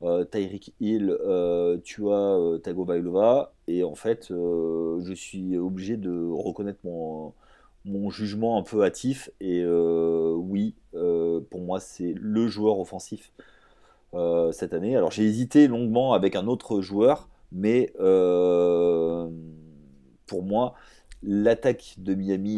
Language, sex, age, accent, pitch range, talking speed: French, male, 30-49, French, 85-100 Hz, 140 wpm